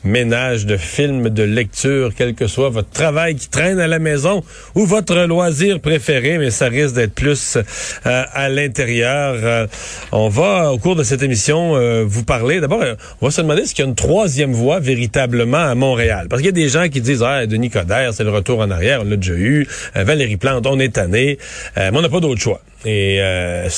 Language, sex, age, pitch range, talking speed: French, male, 40-59, 110-150 Hz, 220 wpm